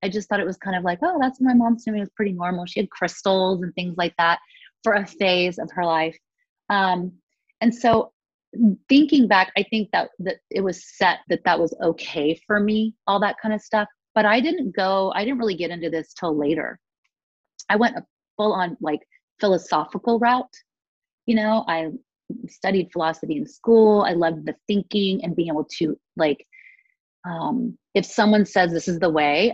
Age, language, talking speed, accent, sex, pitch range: 30-49, English, 195 wpm, American, female, 165-220 Hz